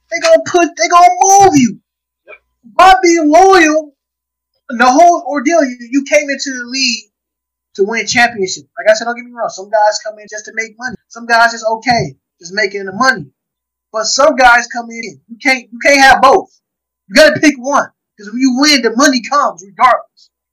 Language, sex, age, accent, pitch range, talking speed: English, male, 20-39, American, 190-280 Hz, 200 wpm